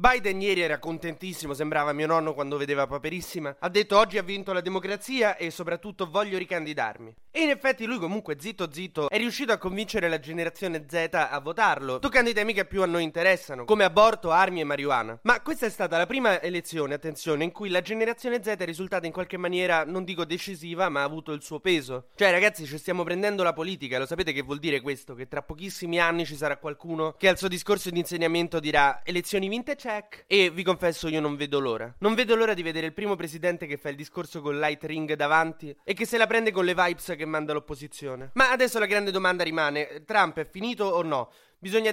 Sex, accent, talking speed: male, native, 220 wpm